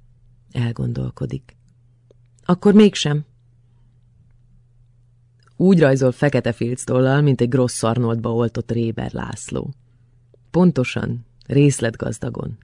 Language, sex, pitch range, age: Hungarian, female, 120-135 Hz, 30-49